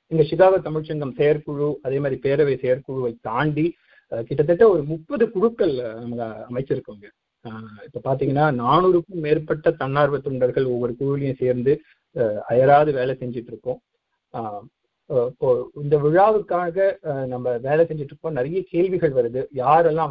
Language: Tamil